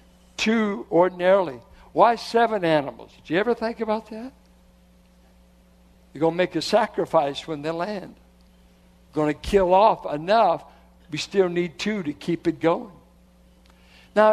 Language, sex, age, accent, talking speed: English, male, 60-79, American, 140 wpm